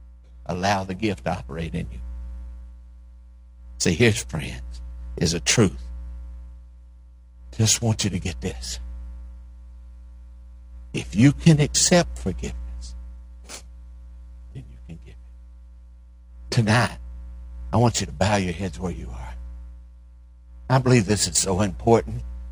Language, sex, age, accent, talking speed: English, male, 60-79, American, 125 wpm